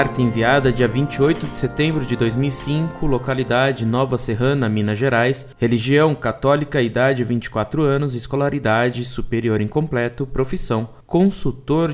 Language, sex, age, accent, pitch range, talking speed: Portuguese, male, 20-39, Brazilian, 115-150 Hz, 115 wpm